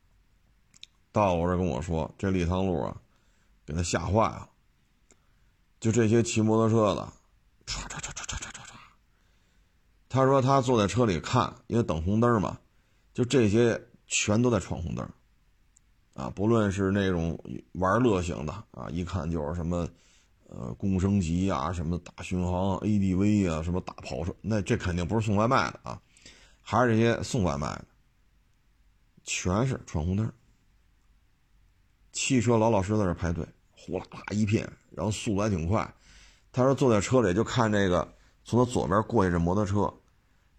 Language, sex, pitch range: Chinese, male, 90-115 Hz